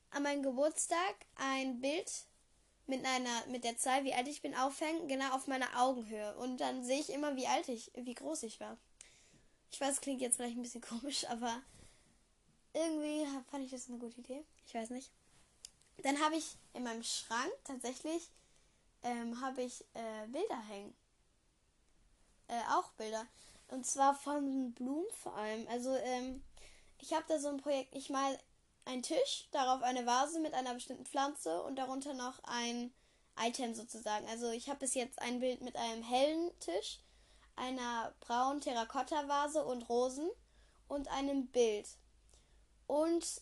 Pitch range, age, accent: 235-285 Hz, 10-29, German